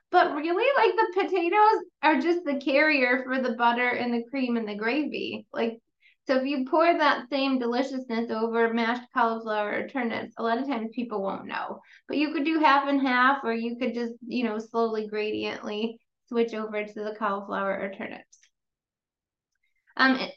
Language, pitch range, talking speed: English, 225-275 Hz, 180 wpm